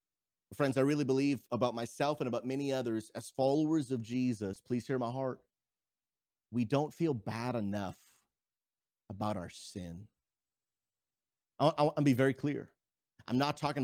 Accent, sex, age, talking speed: American, male, 30-49, 145 wpm